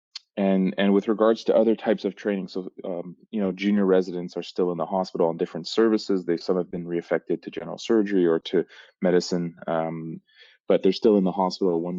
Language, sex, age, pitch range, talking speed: English, male, 20-39, 80-95 Hz, 210 wpm